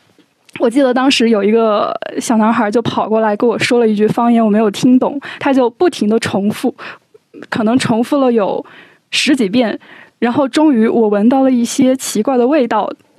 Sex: female